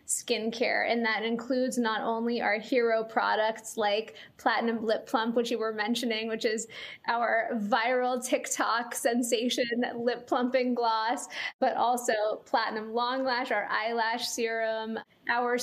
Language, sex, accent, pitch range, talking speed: English, female, American, 225-255 Hz, 135 wpm